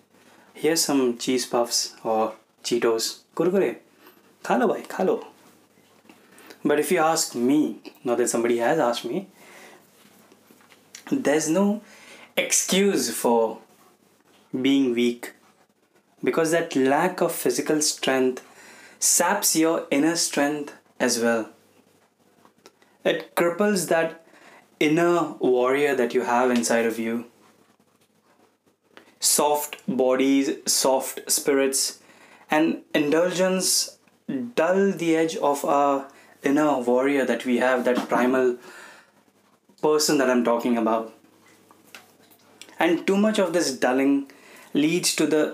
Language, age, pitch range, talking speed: Hindi, 20-39, 120-160 Hz, 110 wpm